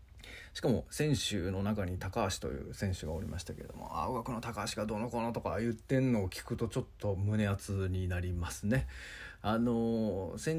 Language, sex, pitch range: Japanese, male, 95-120 Hz